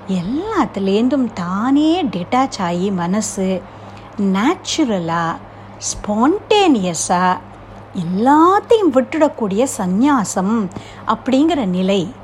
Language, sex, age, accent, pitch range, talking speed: Tamil, female, 60-79, native, 185-275 Hz, 60 wpm